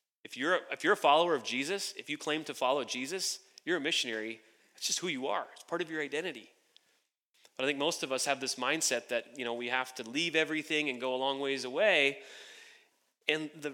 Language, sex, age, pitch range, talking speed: English, male, 30-49, 135-185 Hz, 225 wpm